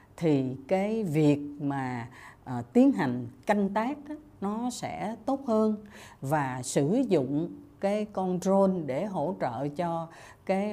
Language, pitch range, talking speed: Vietnamese, 135-205 Hz, 140 wpm